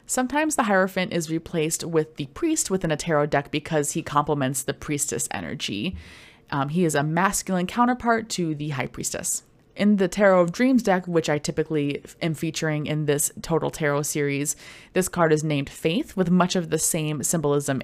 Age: 20-39